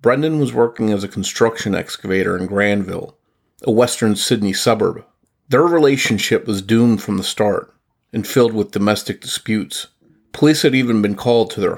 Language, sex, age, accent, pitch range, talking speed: English, male, 40-59, American, 105-130 Hz, 165 wpm